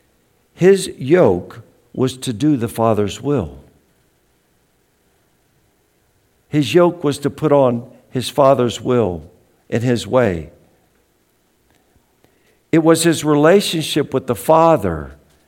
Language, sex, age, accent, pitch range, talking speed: English, male, 60-79, American, 120-195 Hz, 105 wpm